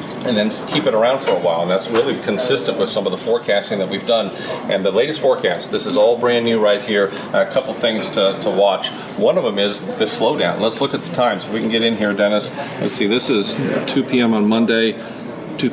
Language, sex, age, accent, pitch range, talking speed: English, male, 40-59, American, 100-120 Hz, 240 wpm